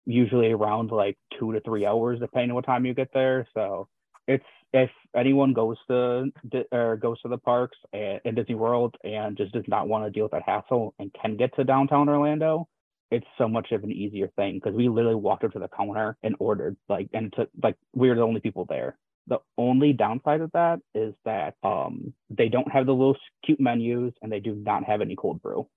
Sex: male